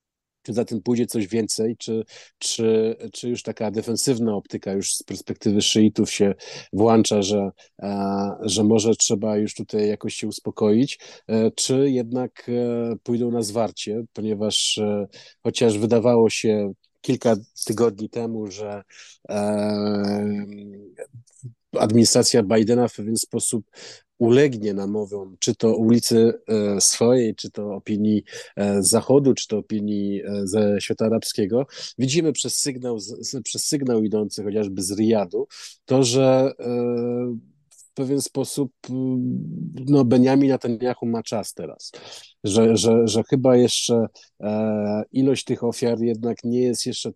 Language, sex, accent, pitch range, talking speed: Polish, male, native, 105-120 Hz, 120 wpm